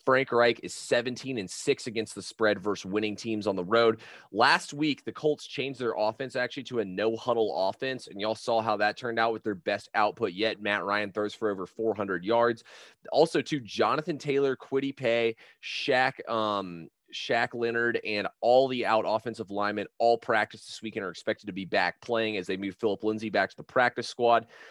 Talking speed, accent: 200 wpm, American